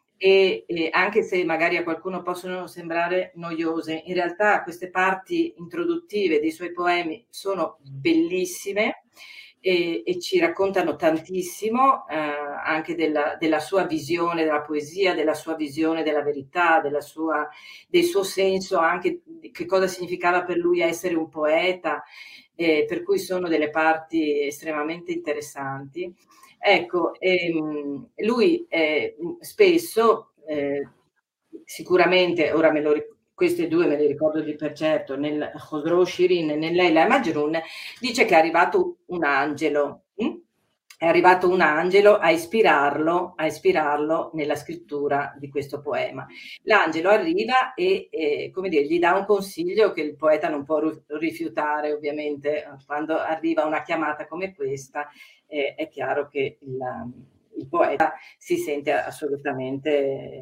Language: Italian